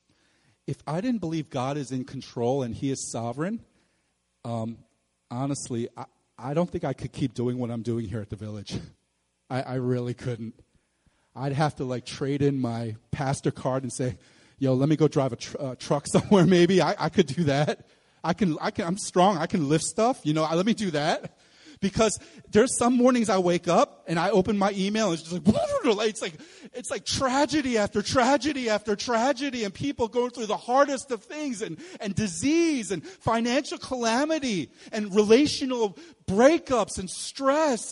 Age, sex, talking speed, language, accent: 30-49, male, 190 wpm, English, American